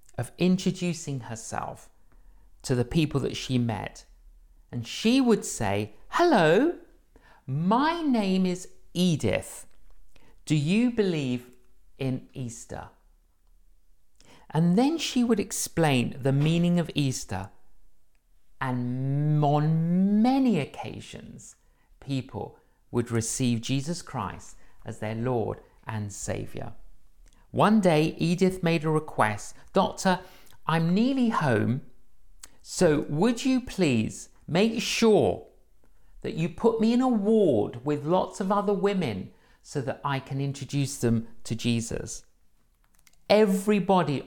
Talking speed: 115 wpm